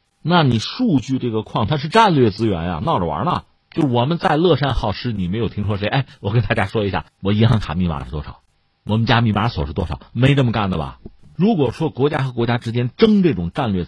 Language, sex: Chinese, male